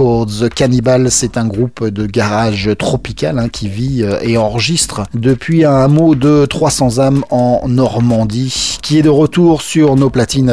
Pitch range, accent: 115-140 Hz, French